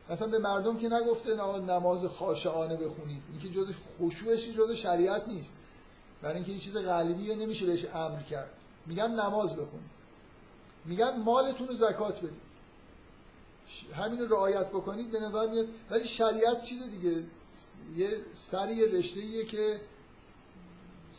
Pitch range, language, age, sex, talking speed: 170-220 Hz, Persian, 50-69, male, 140 wpm